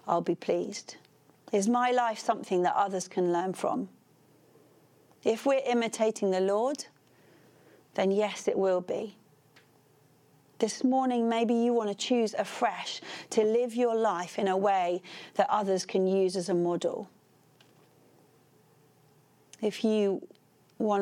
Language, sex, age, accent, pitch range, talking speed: English, female, 40-59, British, 185-235 Hz, 135 wpm